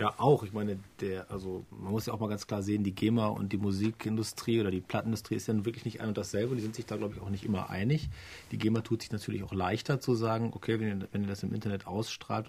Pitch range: 100-115 Hz